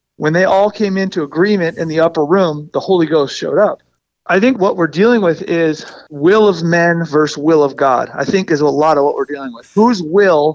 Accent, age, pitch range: American, 40-59, 150-205 Hz